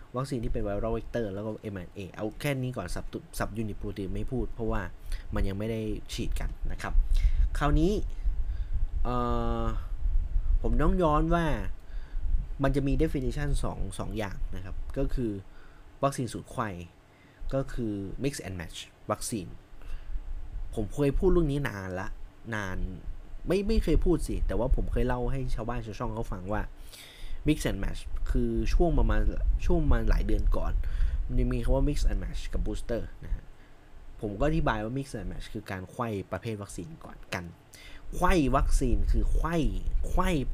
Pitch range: 90-130 Hz